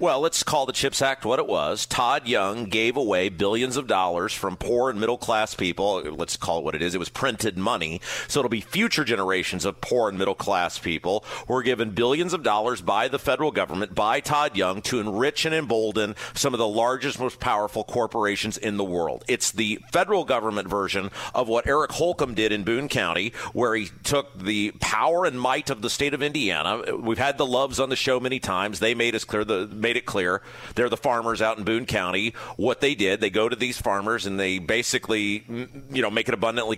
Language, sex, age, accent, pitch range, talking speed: English, male, 40-59, American, 110-155 Hz, 215 wpm